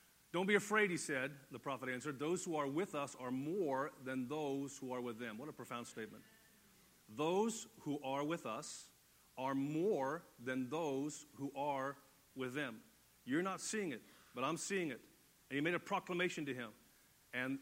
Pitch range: 135-180 Hz